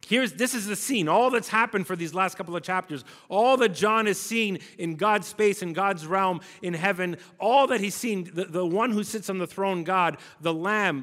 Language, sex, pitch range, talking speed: English, male, 150-195 Hz, 230 wpm